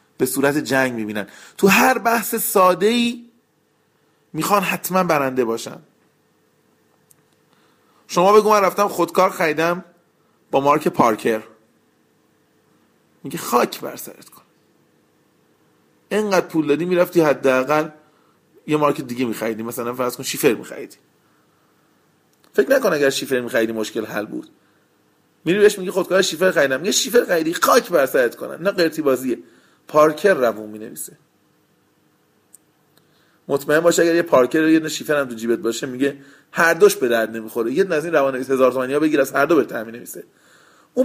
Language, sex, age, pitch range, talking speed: Persian, male, 40-59, 130-180 Hz, 145 wpm